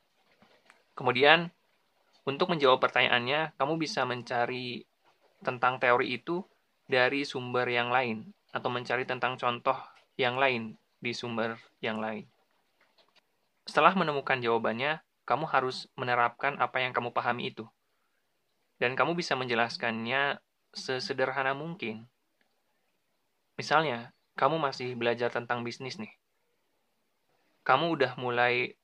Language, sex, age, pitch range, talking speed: Indonesian, male, 20-39, 120-135 Hz, 105 wpm